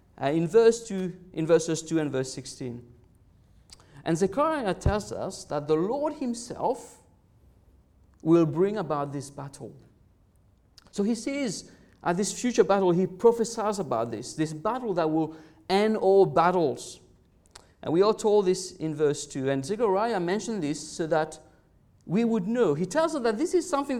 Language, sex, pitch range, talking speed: English, male, 135-210 Hz, 155 wpm